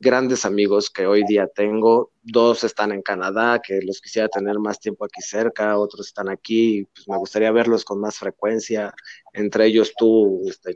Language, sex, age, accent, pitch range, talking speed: Spanish, male, 30-49, Mexican, 105-130 Hz, 180 wpm